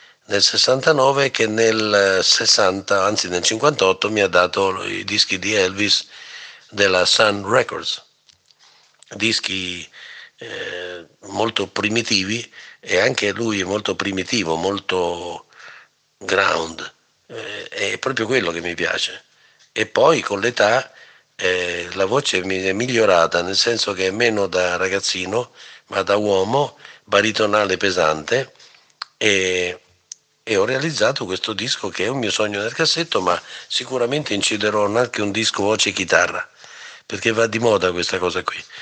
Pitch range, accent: 95-115 Hz, native